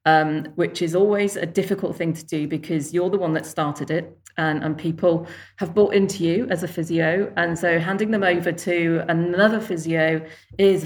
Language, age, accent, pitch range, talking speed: English, 40-59, British, 155-180 Hz, 195 wpm